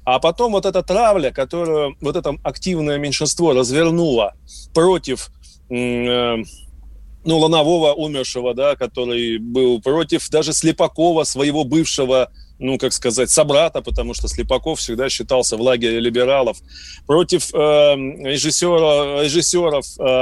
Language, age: Russian, 30-49